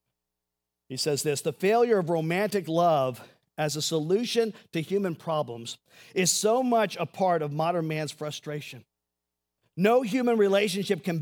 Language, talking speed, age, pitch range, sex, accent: English, 145 wpm, 50-69, 140-185 Hz, male, American